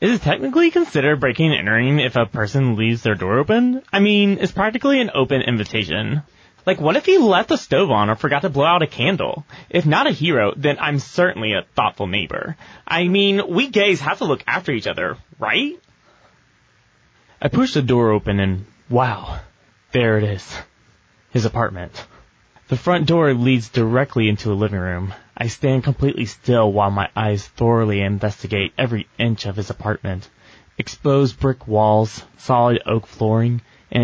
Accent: American